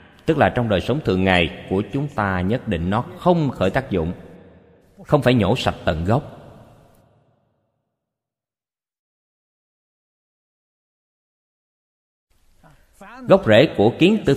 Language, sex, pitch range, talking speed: Vietnamese, male, 95-130 Hz, 115 wpm